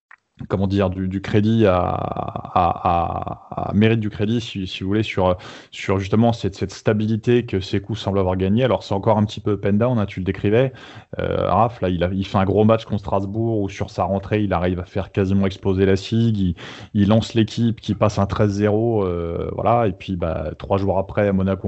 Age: 20-39